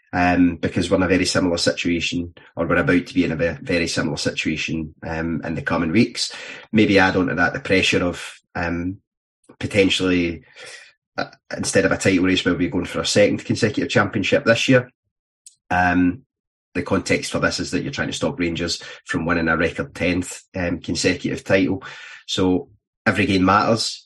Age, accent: 30-49, British